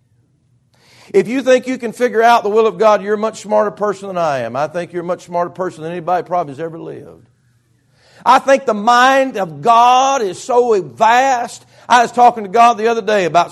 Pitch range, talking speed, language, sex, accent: 160-220 Hz, 220 wpm, English, male, American